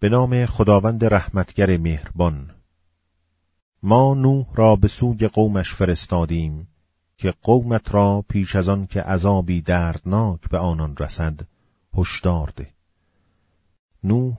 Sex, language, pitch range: male, Persian, 85-110 Hz